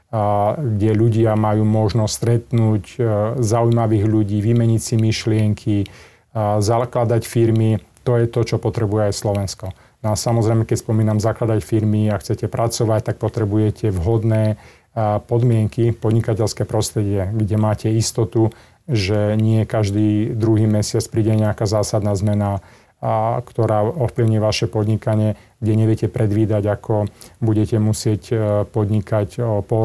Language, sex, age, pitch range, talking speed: Slovak, male, 30-49, 105-115 Hz, 130 wpm